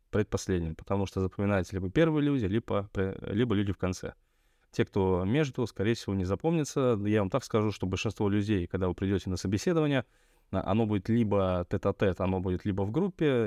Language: Russian